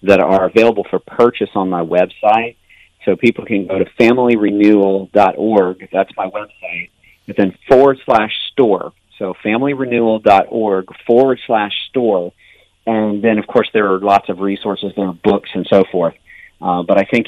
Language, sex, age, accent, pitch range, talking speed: English, male, 40-59, American, 95-110 Hz, 160 wpm